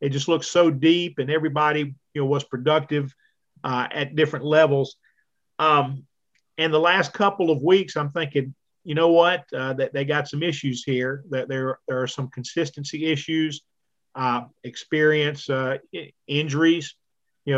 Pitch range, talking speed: 140-160 Hz, 155 wpm